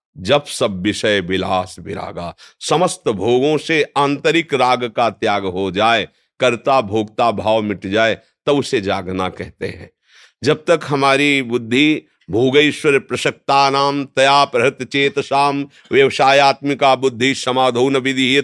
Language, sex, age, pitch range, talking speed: Hindi, male, 50-69, 110-150 Hz, 125 wpm